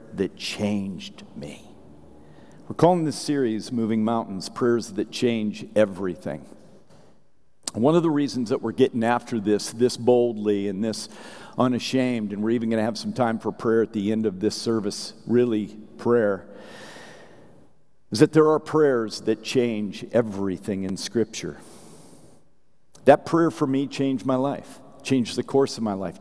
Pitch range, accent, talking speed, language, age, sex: 110-140 Hz, American, 155 wpm, English, 50-69, male